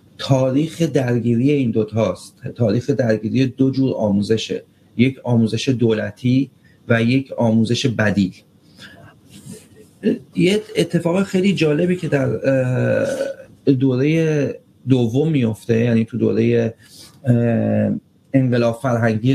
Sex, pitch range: male, 115-145 Hz